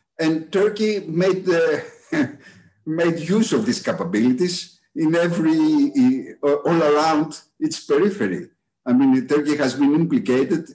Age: 50-69